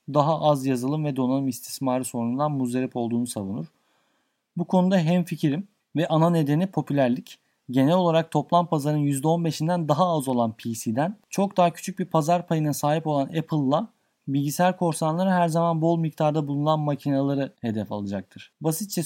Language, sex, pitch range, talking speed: Turkish, male, 130-160 Hz, 145 wpm